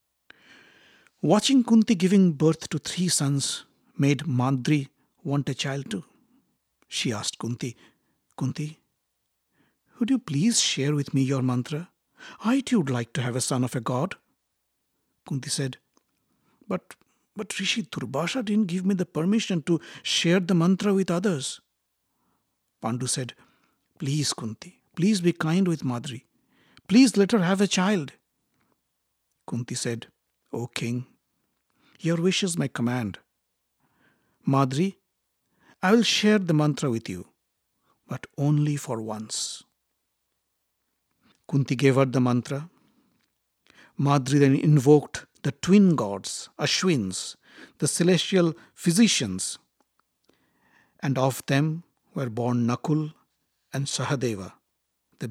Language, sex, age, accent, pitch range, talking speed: English, male, 60-79, Indian, 125-185 Hz, 125 wpm